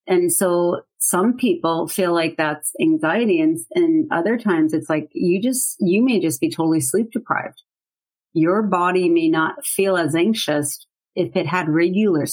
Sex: female